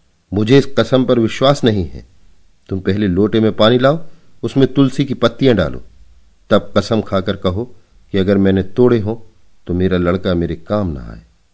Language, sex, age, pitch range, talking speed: Hindi, male, 50-69, 90-120 Hz, 175 wpm